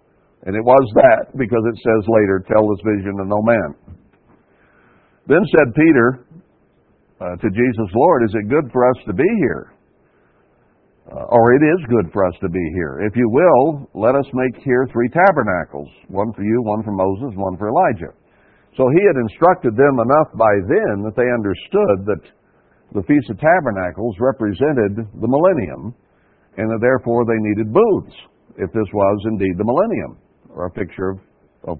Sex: male